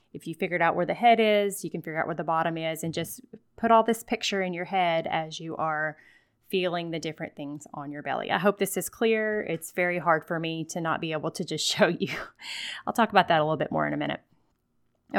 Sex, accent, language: female, American, English